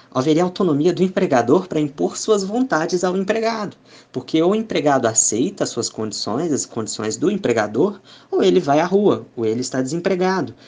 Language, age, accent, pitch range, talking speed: Portuguese, 20-39, Brazilian, 115-155 Hz, 175 wpm